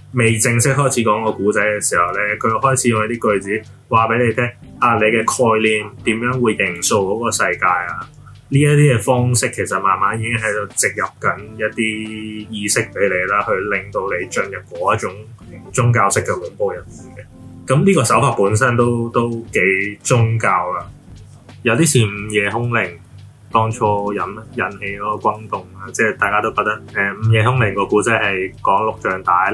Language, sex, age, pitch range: Chinese, male, 20-39, 105-120 Hz